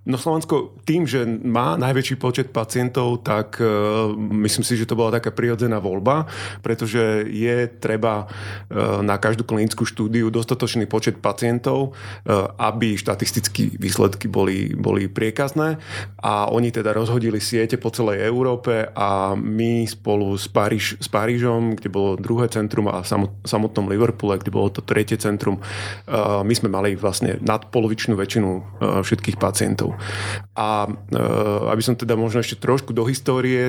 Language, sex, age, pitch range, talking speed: Slovak, male, 30-49, 105-115 Hz, 145 wpm